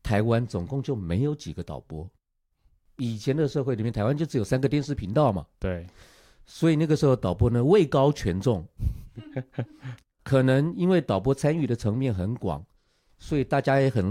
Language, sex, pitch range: Chinese, male, 95-140 Hz